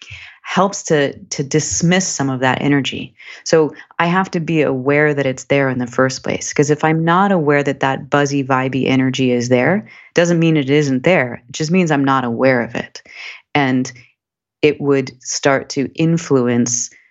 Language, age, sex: English, 30-49, female